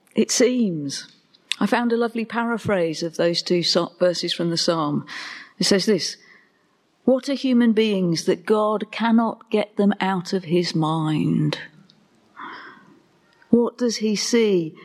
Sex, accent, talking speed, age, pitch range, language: female, British, 135 wpm, 40-59, 170-220 Hz, English